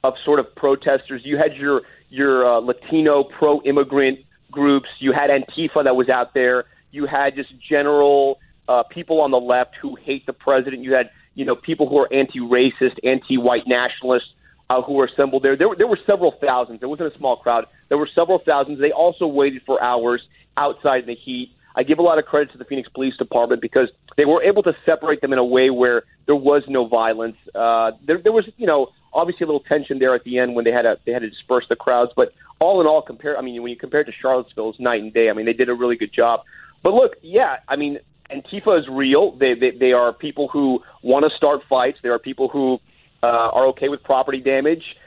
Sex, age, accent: male, 30-49, American